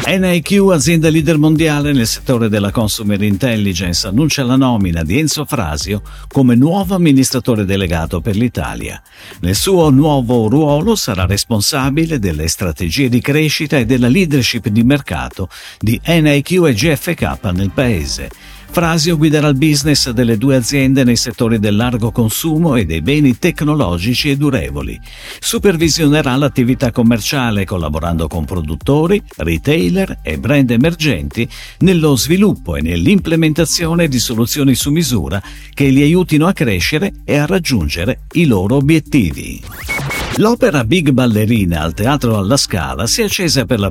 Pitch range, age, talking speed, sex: 105-155 Hz, 50-69, 140 wpm, male